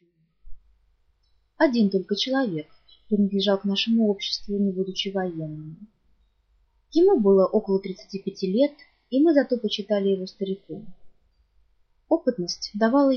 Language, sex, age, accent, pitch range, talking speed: Russian, female, 20-39, native, 185-245 Hz, 105 wpm